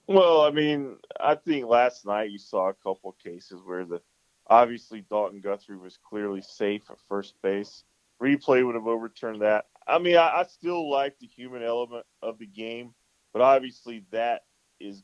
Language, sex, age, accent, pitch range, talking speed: English, male, 20-39, American, 105-125 Hz, 180 wpm